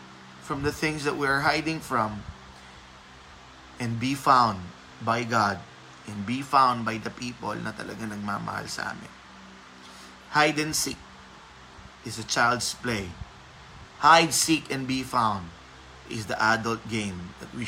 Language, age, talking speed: Filipino, 20-39, 145 wpm